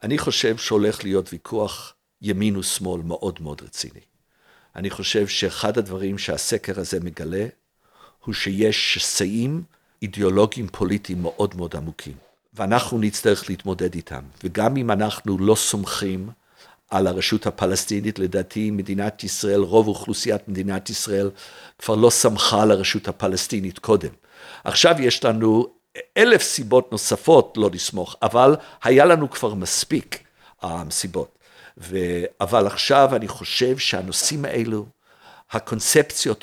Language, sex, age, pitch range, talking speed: Hebrew, male, 50-69, 95-120 Hz, 110 wpm